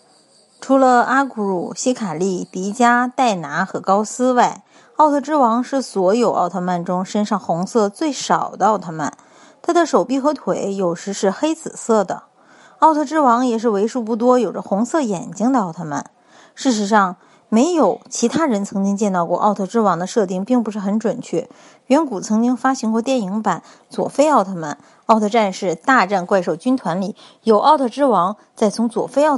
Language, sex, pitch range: Chinese, female, 195-260 Hz